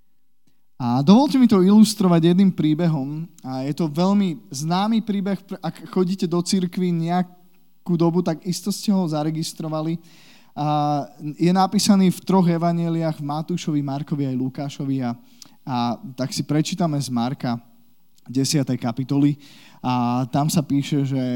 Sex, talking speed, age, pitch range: male, 140 wpm, 20-39, 150-190 Hz